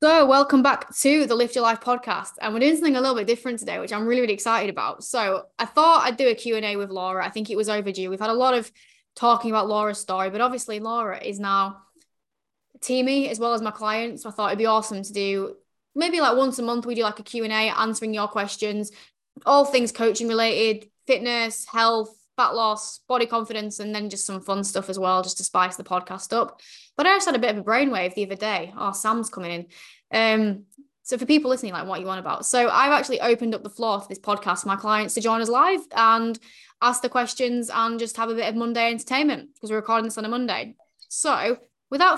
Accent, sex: British, female